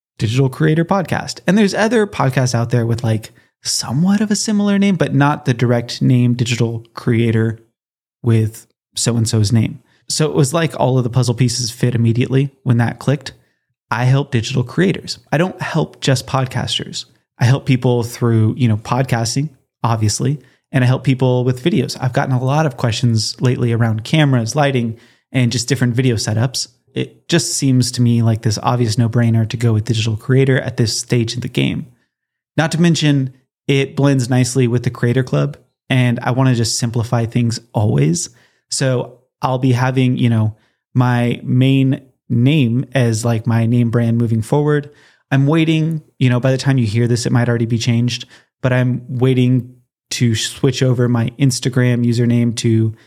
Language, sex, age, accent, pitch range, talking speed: English, male, 30-49, American, 120-135 Hz, 180 wpm